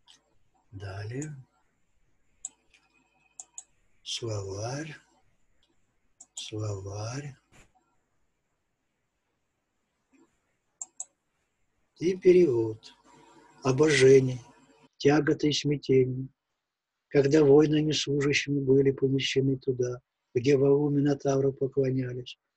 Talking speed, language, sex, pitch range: 50 wpm, Russian, male, 135-155 Hz